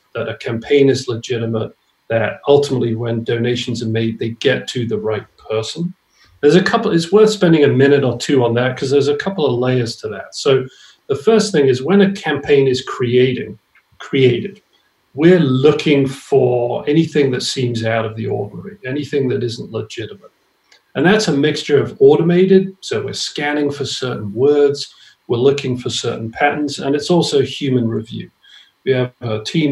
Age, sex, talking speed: 40-59, male, 180 wpm